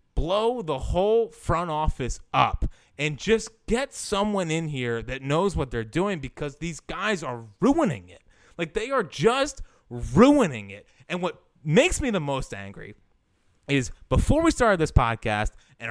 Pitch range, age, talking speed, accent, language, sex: 120-195 Hz, 20-39, 160 wpm, American, English, male